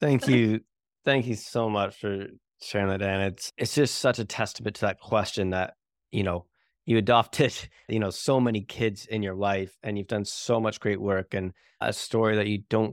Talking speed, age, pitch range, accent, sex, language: 210 wpm, 20-39, 95-110 Hz, American, male, English